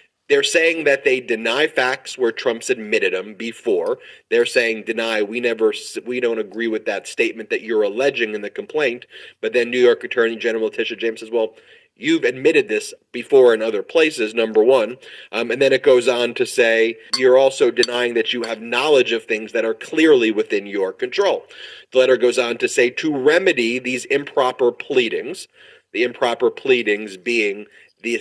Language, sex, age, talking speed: English, male, 30-49, 185 wpm